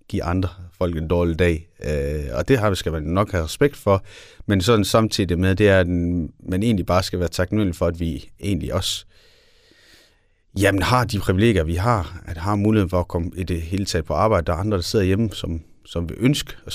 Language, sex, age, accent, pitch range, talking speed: Danish, male, 30-49, native, 85-100 Hz, 225 wpm